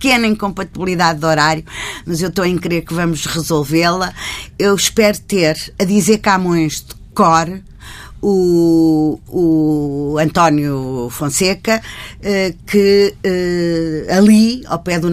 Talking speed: 125 wpm